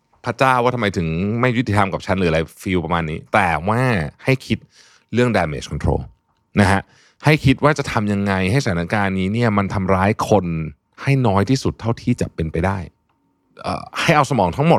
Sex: male